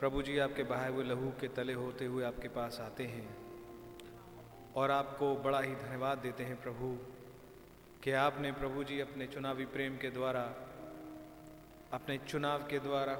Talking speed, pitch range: 160 wpm, 125-145 Hz